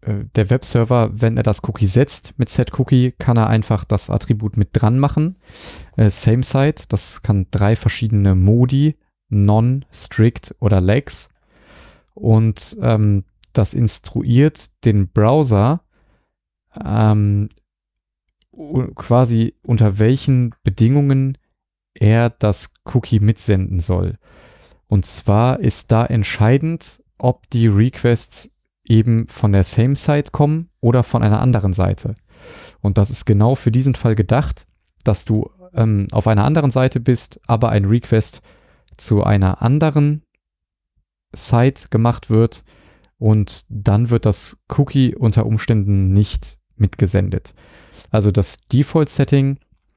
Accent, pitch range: German, 105-125 Hz